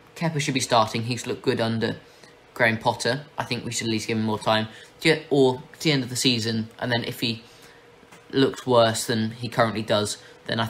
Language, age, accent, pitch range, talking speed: English, 20-39, British, 115-140 Hz, 220 wpm